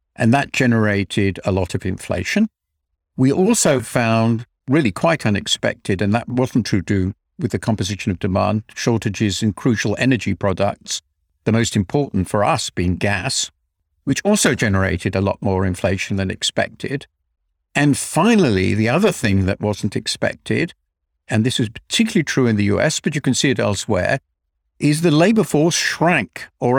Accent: British